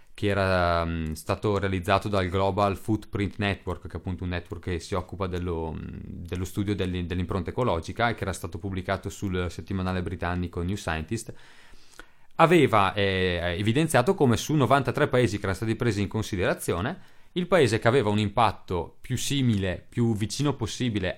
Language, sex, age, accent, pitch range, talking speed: Italian, male, 30-49, native, 90-115 Hz, 160 wpm